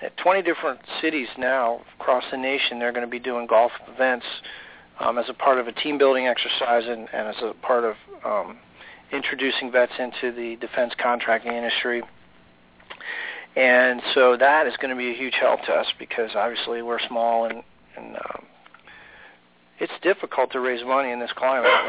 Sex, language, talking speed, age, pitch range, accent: male, English, 175 wpm, 40-59, 115-130 Hz, American